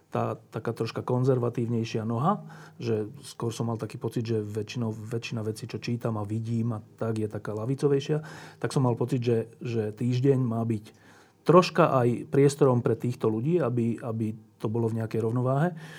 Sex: male